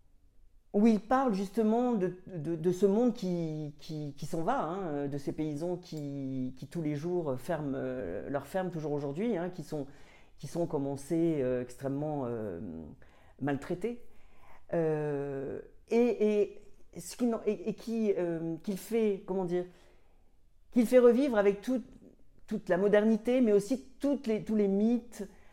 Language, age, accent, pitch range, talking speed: French, 40-59, French, 145-210 Hz, 155 wpm